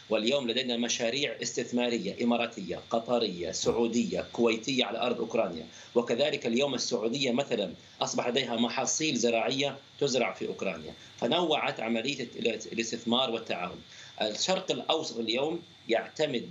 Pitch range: 115-135 Hz